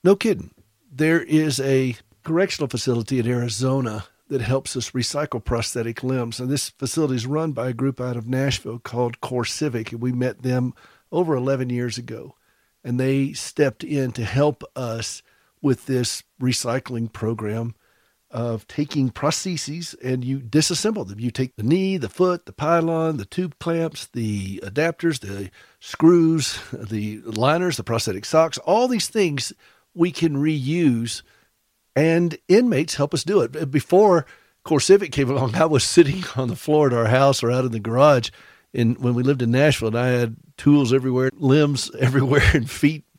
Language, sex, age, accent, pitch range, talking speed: English, male, 50-69, American, 120-150 Hz, 170 wpm